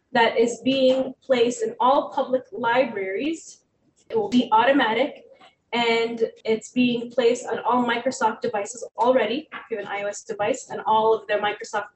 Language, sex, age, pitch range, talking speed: English, female, 20-39, 220-280 Hz, 160 wpm